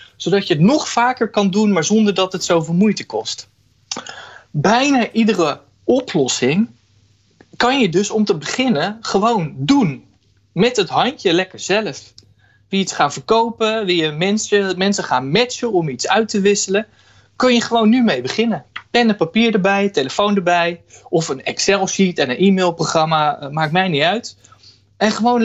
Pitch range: 145-210 Hz